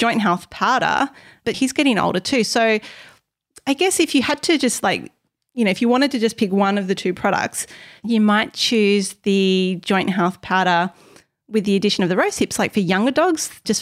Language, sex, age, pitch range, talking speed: English, female, 30-49, 185-225 Hz, 215 wpm